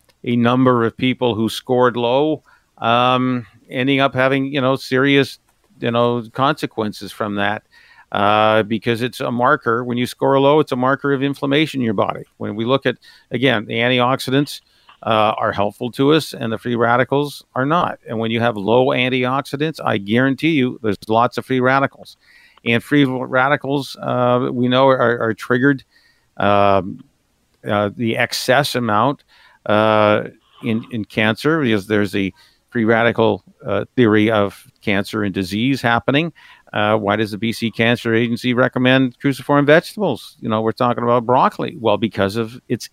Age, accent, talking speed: 50-69, American, 165 wpm